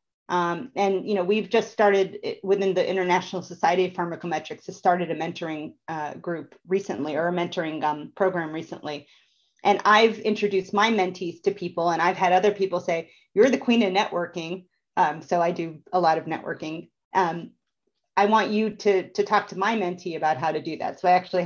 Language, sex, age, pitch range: English, female, 40-59, 170-200 Hz